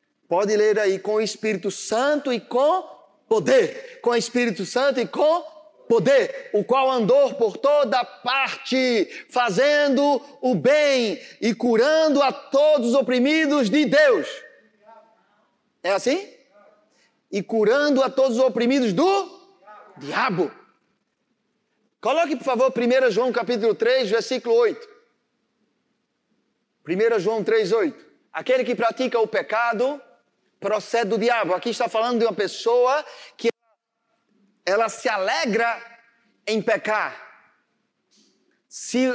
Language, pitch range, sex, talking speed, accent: Portuguese, 225-285 Hz, male, 120 wpm, Brazilian